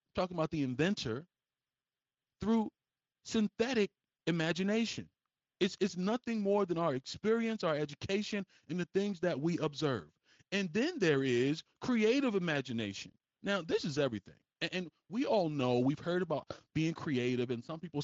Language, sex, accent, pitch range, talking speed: English, male, American, 135-185 Hz, 150 wpm